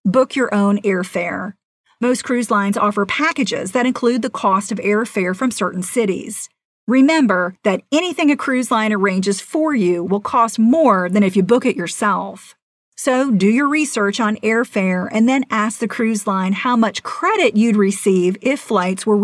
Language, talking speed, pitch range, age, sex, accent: English, 175 wpm, 200-260 Hz, 40-59, female, American